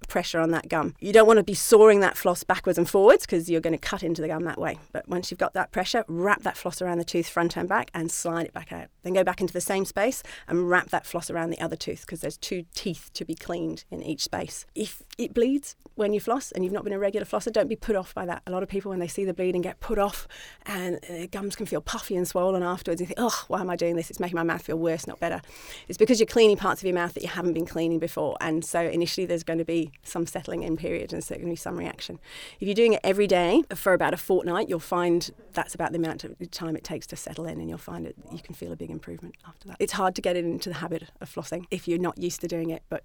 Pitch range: 165-190 Hz